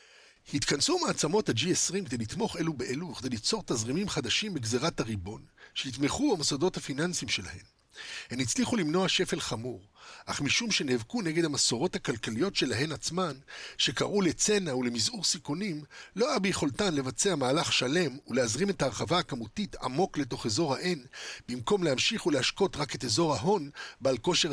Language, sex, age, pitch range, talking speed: Hebrew, male, 50-69, 120-180 Hz, 140 wpm